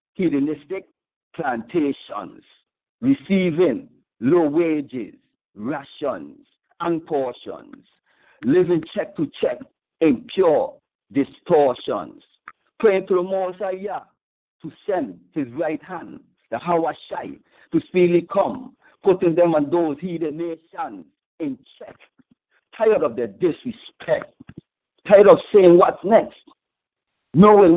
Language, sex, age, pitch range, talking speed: English, male, 50-69, 165-260 Hz, 105 wpm